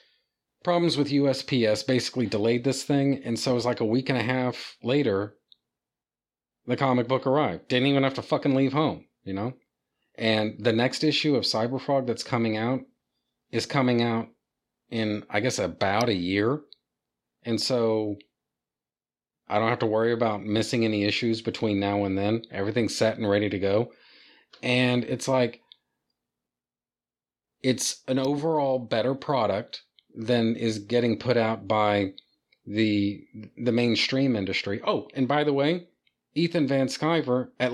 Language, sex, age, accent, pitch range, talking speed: English, male, 40-59, American, 110-135 Hz, 155 wpm